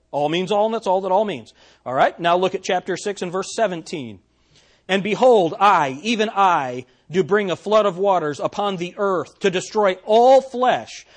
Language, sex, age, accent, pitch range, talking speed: English, male, 40-59, American, 155-210 Hz, 200 wpm